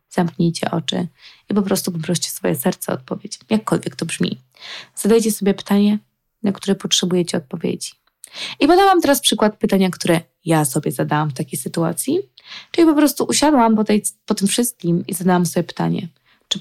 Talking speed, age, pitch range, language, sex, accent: 165 wpm, 20-39, 175-230 Hz, Polish, female, native